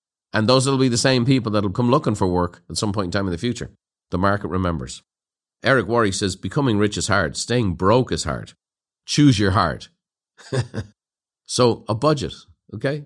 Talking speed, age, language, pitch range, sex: 195 wpm, 50-69, English, 95-130 Hz, male